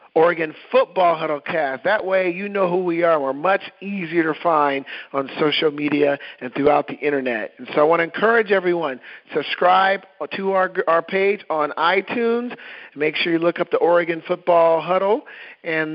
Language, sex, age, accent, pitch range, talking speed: English, male, 40-59, American, 155-185 Hz, 175 wpm